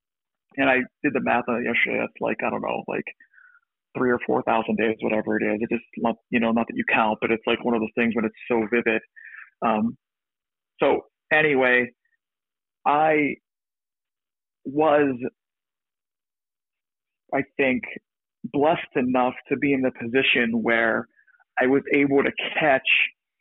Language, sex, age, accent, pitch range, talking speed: English, male, 40-59, American, 120-145 Hz, 155 wpm